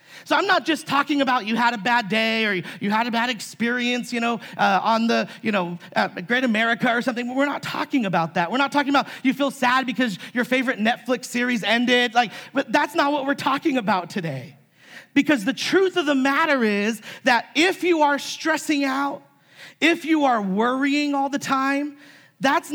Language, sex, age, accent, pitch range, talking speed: English, male, 30-49, American, 215-280 Hz, 205 wpm